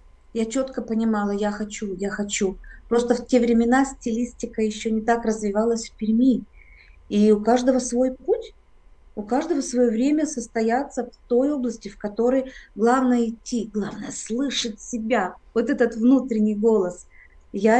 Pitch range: 205-245 Hz